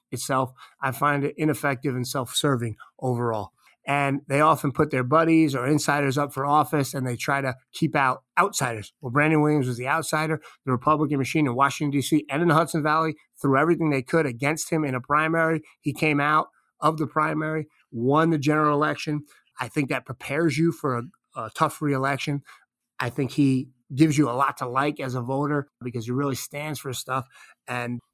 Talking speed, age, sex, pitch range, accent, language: 200 wpm, 30-49, male, 130-155 Hz, American, English